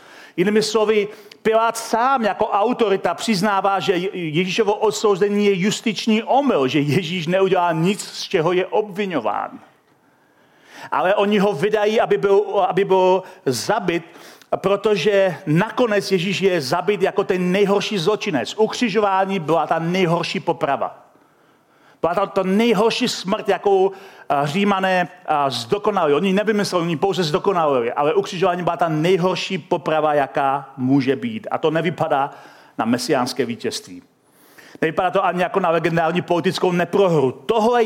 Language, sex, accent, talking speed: Czech, male, native, 125 wpm